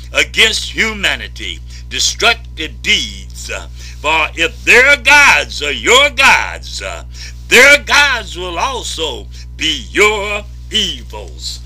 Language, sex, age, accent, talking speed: English, male, 60-79, American, 95 wpm